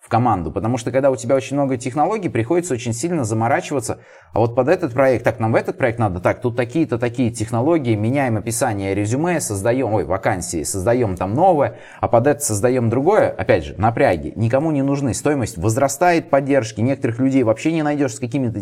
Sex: male